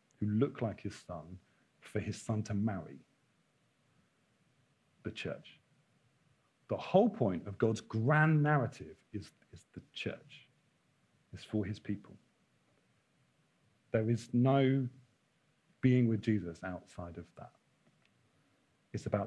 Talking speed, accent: 120 wpm, British